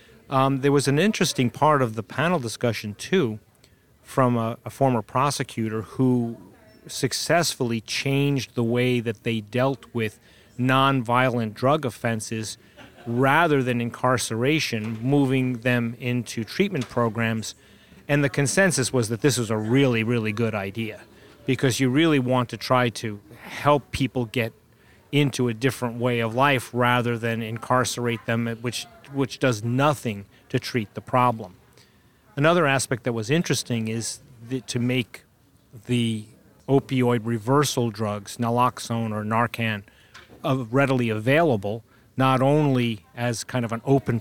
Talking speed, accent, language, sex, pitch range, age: 140 wpm, American, English, male, 115-135 Hz, 30-49